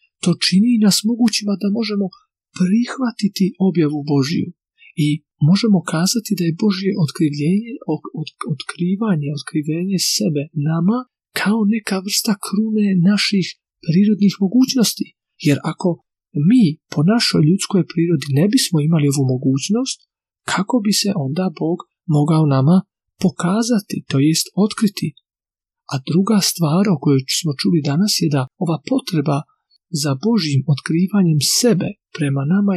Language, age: Croatian, 40-59